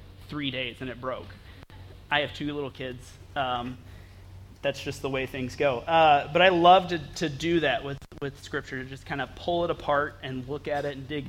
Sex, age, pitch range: male, 30-49, 100-160 Hz